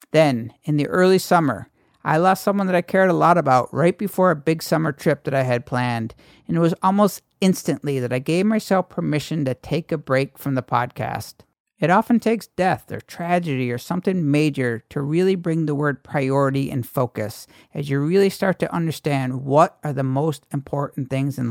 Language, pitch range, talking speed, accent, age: English, 140-180 Hz, 200 wpm, American, 50-69